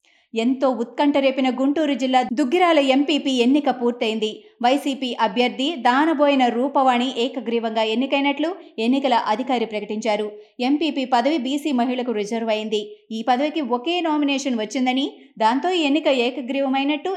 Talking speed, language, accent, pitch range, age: 110 wpm, Telugu, native, 220-275 Hz, 20-39